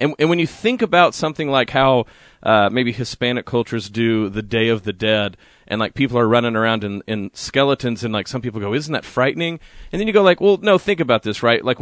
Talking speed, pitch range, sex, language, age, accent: 245 wpm, 110-150 Hz, male, English, 30-49, American